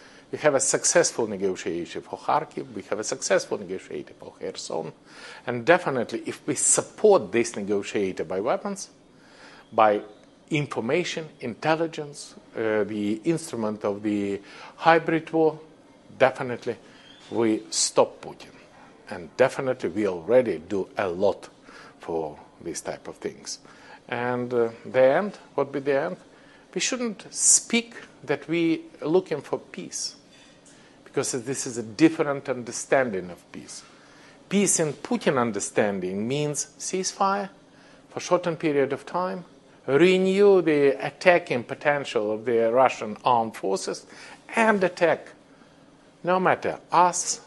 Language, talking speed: English, 130 wpm